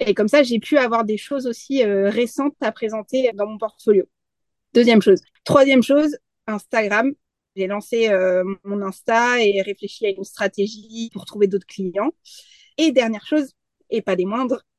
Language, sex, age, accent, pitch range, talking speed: French, female, 30-49, French, 200-260 Hz, 170 wpm